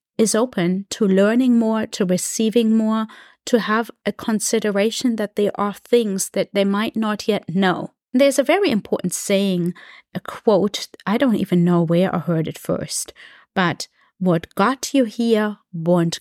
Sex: female